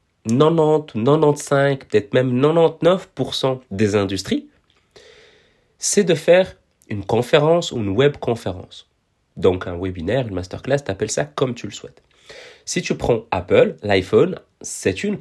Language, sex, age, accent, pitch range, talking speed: French, male, 30-49, French, 100-145 Hz, 140 wpm